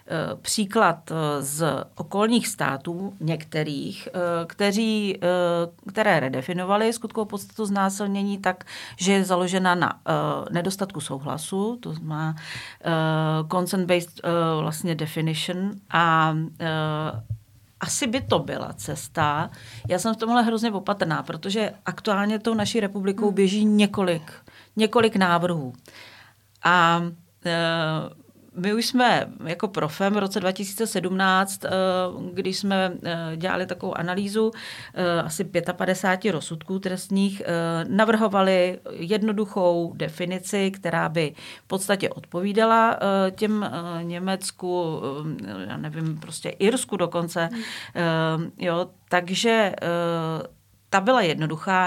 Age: 40-59